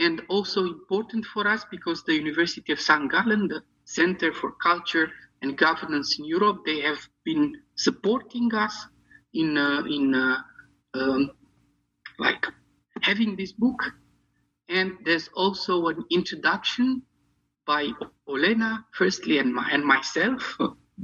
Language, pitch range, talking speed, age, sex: English, 155-250 Hz, 130 wpm, 50-69, male